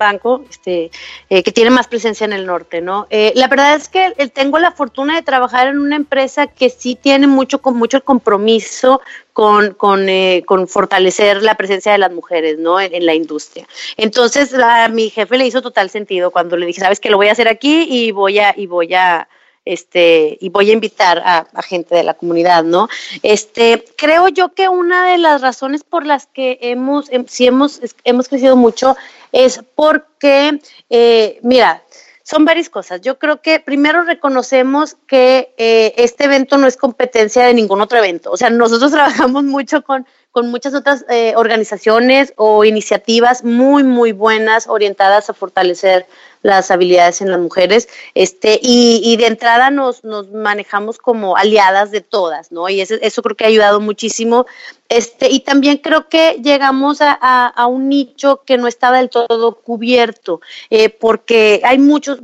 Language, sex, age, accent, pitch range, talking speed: Spanish, female, 30-49, Mexican, 205-265 Hz, 185 wpm